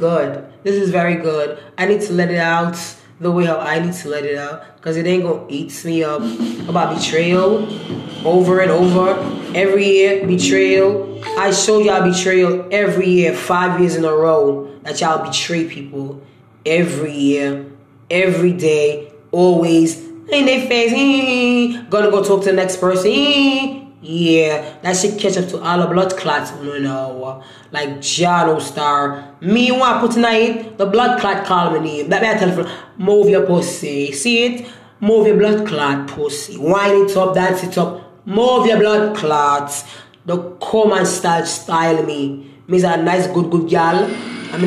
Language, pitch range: English, 160-210 Hz